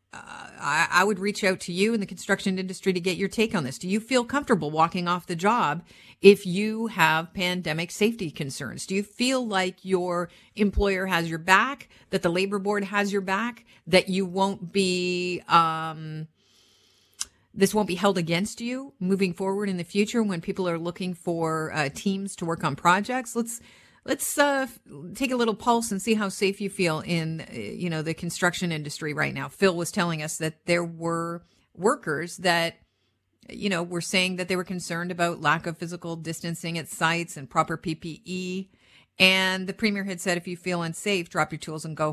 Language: English